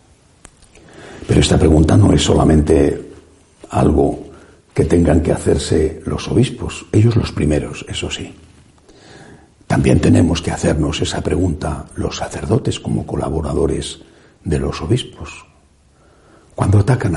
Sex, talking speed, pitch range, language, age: male, 110 wpm, 80-125 Hz, Spanish, 60-79